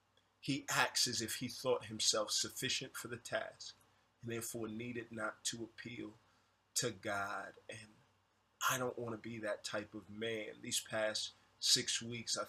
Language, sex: English, male